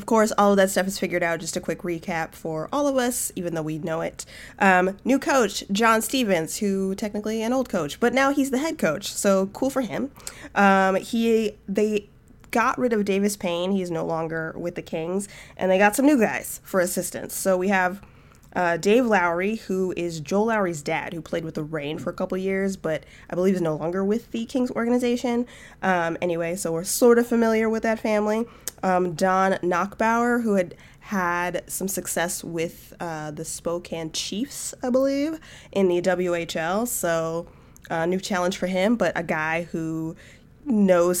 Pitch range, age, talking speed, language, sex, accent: 170-220 Hz, 20-39, 195 wpm, English, female, American